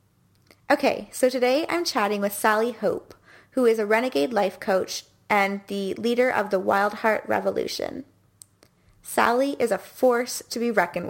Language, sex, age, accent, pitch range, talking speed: English, female, 20-39, American, 200-245 Hz, 155 wpm